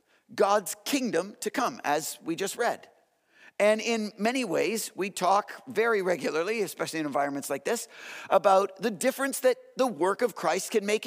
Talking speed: 170 wpm